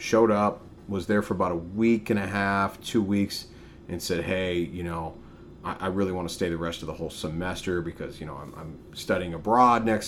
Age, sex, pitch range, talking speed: 30-49, male, 85-100 Hz, 225 wpm